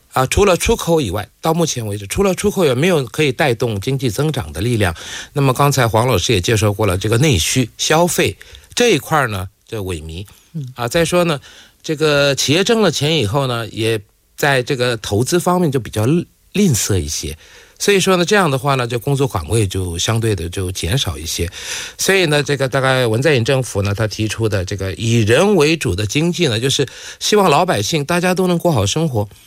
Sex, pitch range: male, 105-160 Hz